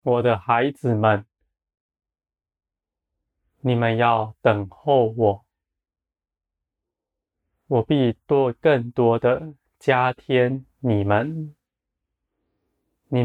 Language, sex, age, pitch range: Chinese, male, 20-39, 80-125 Hz